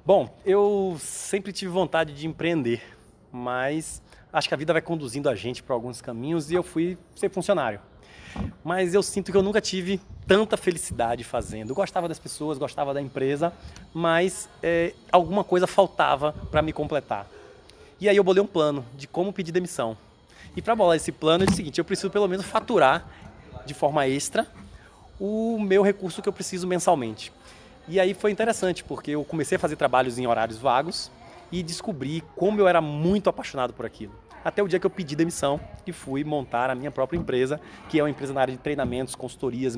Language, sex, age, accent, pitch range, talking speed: Portuguese, male, 20-39, Brazilian, 130-185 Hz, 190 wpm